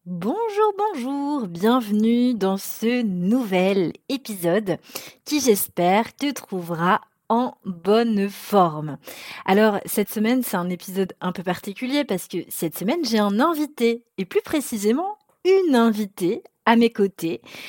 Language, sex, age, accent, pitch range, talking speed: French, female, 30-49, French, 180-230 Hz, 130 wpm